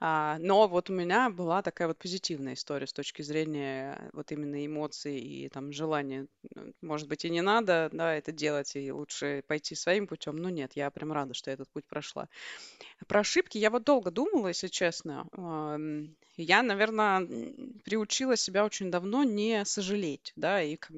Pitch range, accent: 155-195 Hz, native